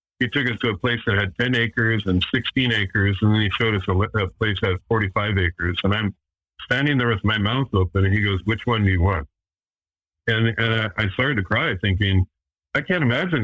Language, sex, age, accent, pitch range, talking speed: English, male, 50-69, American, 95-115 Hz, 230 wpm